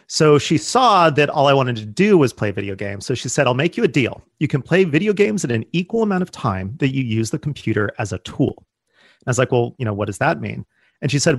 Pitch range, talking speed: 110-155 Hz, 285 wpm